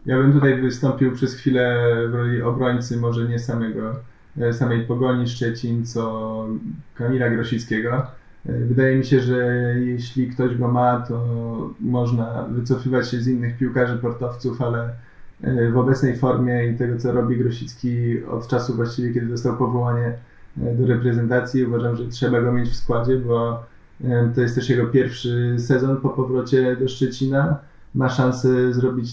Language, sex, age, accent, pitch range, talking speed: Polish, male, 20-39, native, 120-130 Hz, 145 wpm